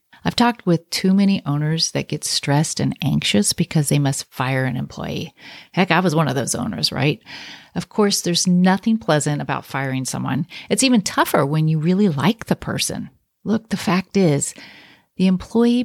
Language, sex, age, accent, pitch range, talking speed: English, female, 40-59, American, 145-190 Hz, 180 wpm